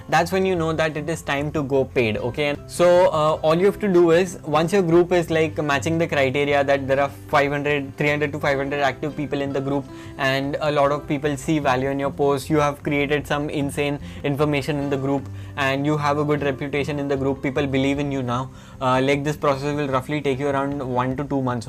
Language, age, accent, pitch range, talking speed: English, 10-29, Indian, 140-150 Hz, 240 wpm